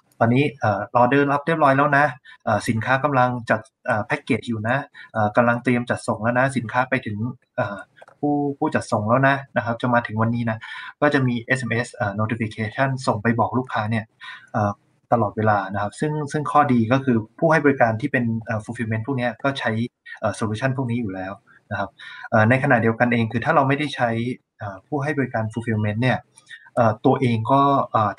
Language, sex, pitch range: Thai, male, 110-135 Hz